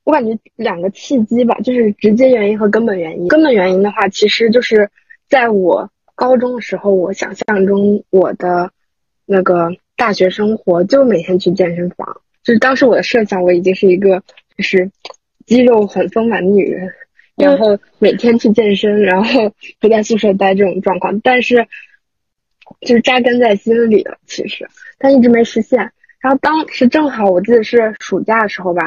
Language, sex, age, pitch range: Chinese, female, 20-39, 190-240 Hz